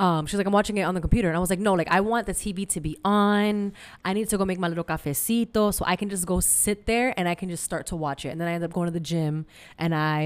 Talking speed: 330 wpm